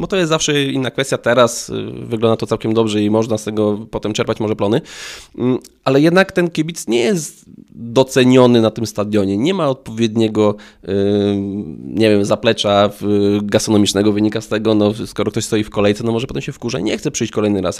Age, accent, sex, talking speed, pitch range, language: 20-39, native, male, 190 wpm, 105-130 Hz, Polish